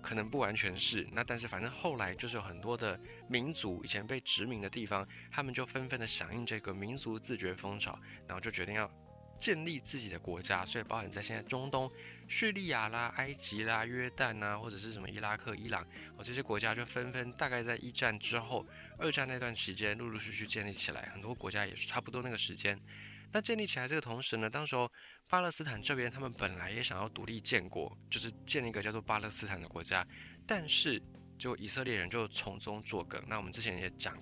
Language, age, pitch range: Chinese, 20-39, 100-125 Hz